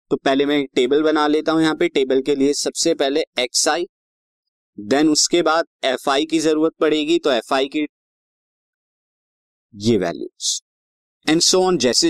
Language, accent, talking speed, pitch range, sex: Hindi, native, 175 wpm, 135-175 Hz, male